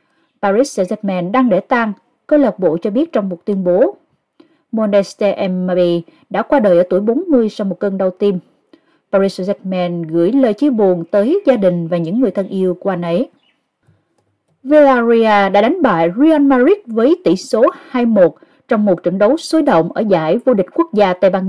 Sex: female